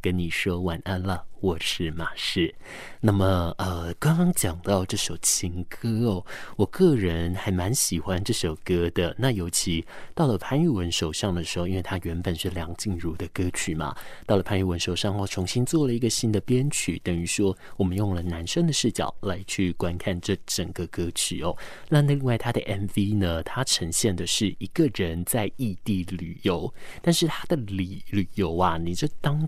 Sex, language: male, Chinese